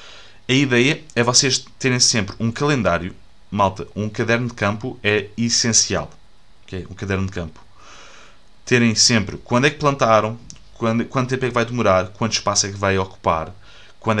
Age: 20-39